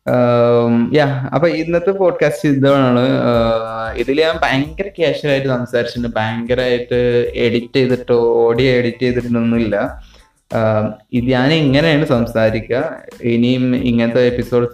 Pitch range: 115-140 Hz